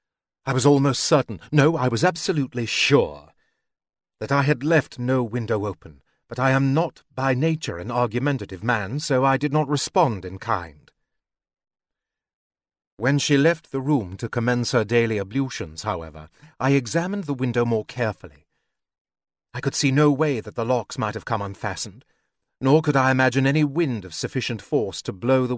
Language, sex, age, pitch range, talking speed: English, male, 40-59, 110-145 Hz, 170 wpm